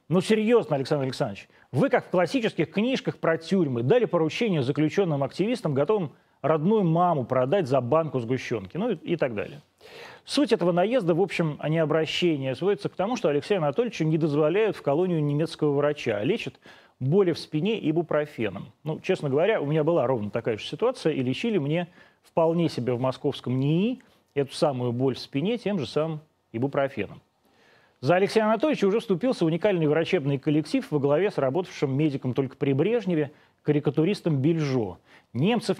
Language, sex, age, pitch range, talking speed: Russian, male, 30-49, 140-180 Hz, 165 wpm